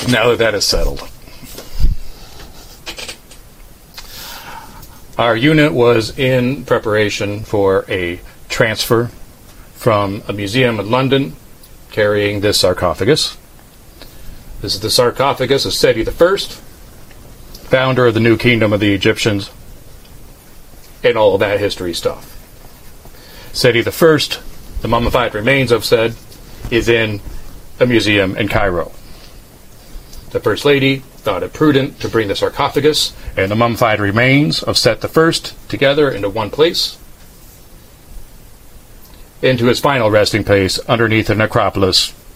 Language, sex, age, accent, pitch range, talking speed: English, male, 40-59, American, 105-135 Hz, 120 wpm